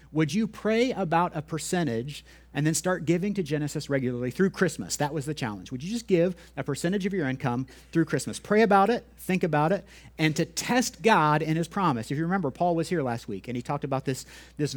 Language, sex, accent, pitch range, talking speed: English, male, American, 130-185 Hz, 230 wpm